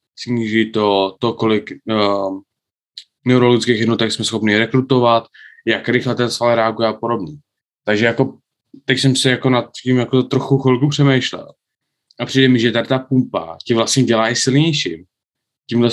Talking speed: 160 wpm